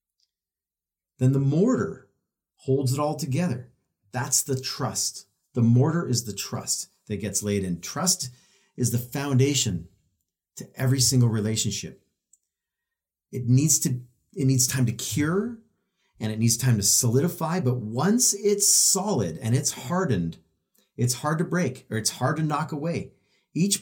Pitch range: 105-175 Hz